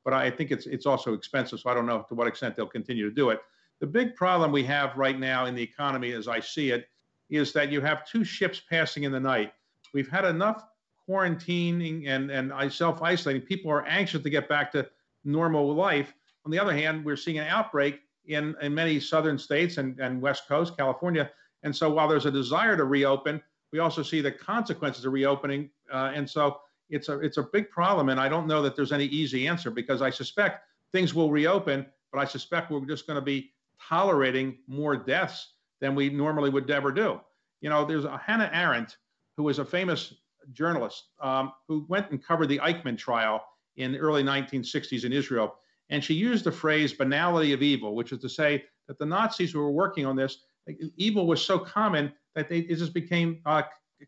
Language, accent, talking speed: English, American, 210 wpm